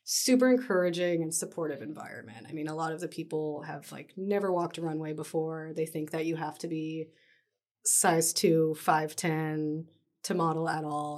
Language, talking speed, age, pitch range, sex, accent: English, 185 wpm, 30-49, 155-185 Hz, female, American